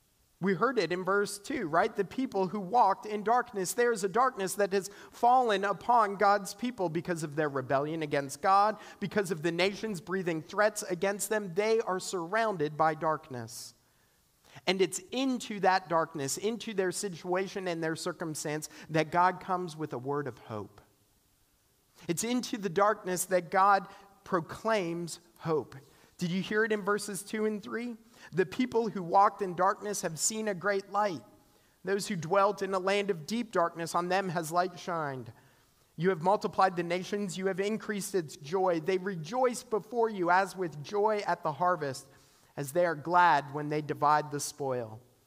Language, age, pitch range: English, 40-59, 160-210 Hz